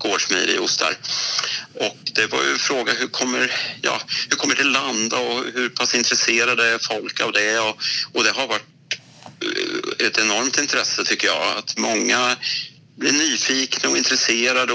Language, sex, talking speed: Swedish, male, 165 wpm